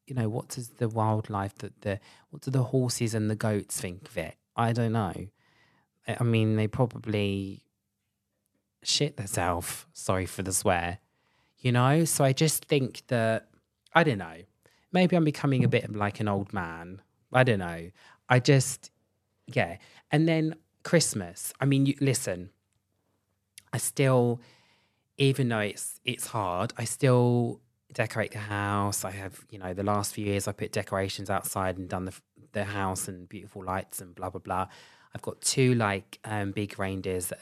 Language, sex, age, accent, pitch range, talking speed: English, male, 20-39, British, 95-130 Hz, 170 wpm